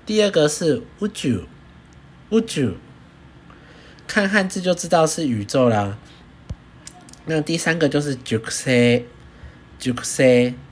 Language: Chinese